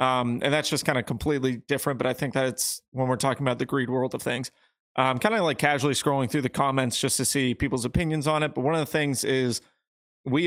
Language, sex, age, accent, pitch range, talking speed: English, male, 30-49, American, 130-140 Hz, 250 wpm